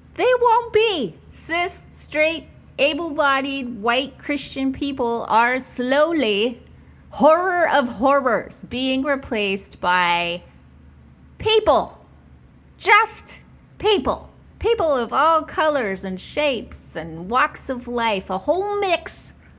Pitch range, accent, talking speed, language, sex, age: 220-325 Hz, American, 100 wpm, English, female, 30-49